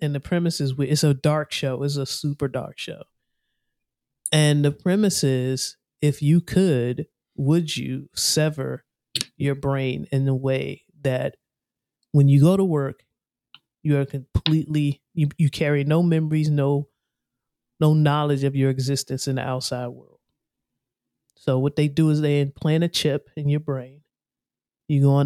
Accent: American